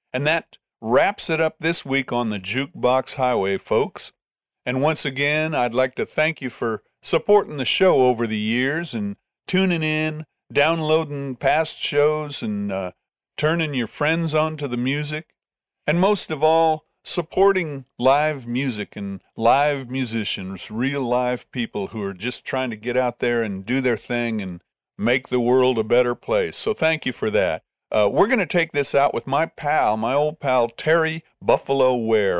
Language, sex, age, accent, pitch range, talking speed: English, male, 50-69, American, 110-145 Hz, 175 wpm